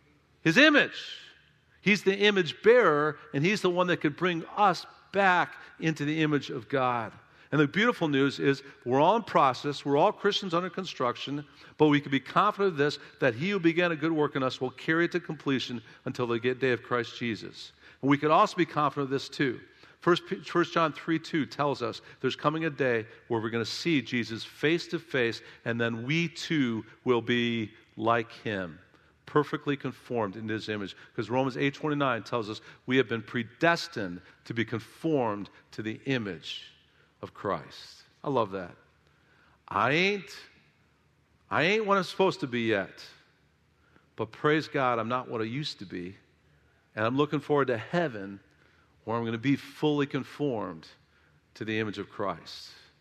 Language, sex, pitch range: English, male, 115-160 Hz